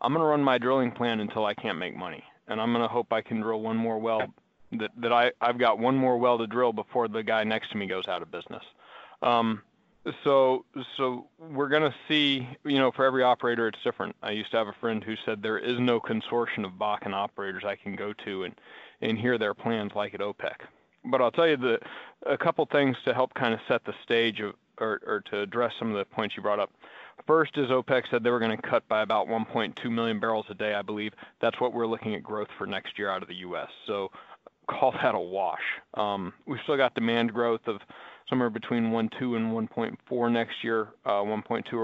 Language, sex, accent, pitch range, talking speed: English, male, American, 110-125 Hz, 230 wpm